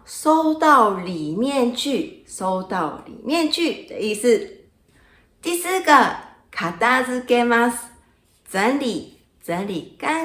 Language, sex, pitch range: Chinese, female, 185-260 Hz